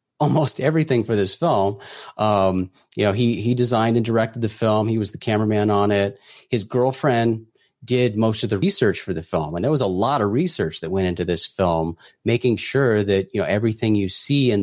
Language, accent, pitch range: English, American, 100-125 Hz